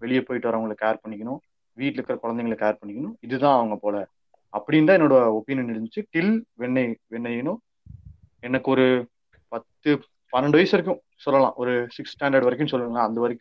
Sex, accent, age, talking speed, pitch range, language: male, native, 30-49, 155 wpm, 115-145 Hz, Tamil